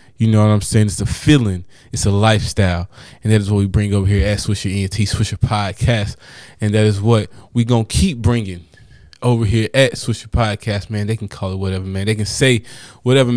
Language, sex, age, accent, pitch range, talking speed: English, male, 20-39, American, 100-120 Hz, 215 wpm